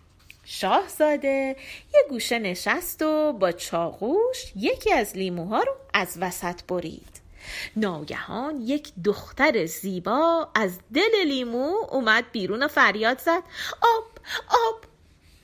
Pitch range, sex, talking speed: 210-350 Hz, female, 110 wpm